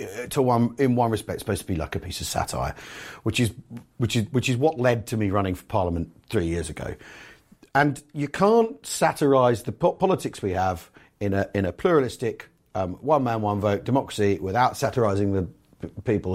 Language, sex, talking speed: English, male, 200 wpm